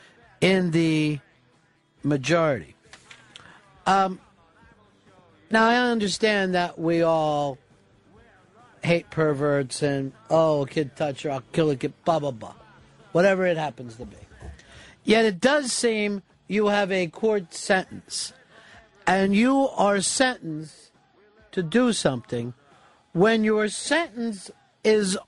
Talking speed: 115 wpm